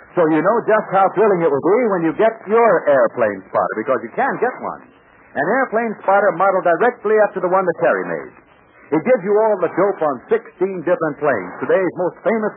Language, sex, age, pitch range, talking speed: English, male, 60-79, 185-235 Hz, 210 wpm